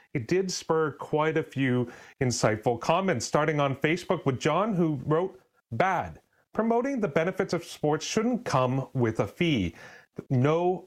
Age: 30-49